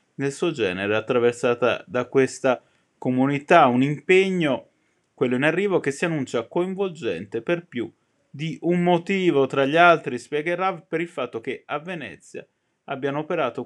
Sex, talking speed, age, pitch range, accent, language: male, 145 wpm, 20-39, 115-170 Hz, native, Italian